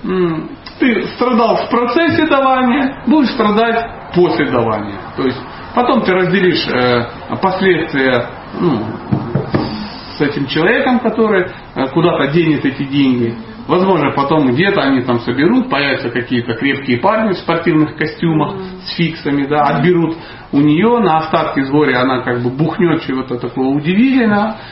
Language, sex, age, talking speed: Russian, male, 40-59, 130 wpm